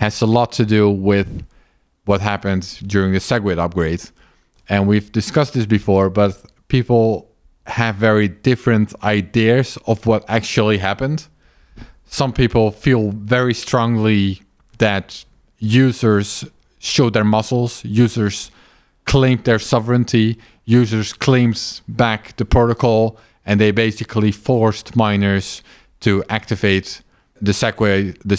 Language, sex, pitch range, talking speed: English, male, 100-120 Hz, 115 wpm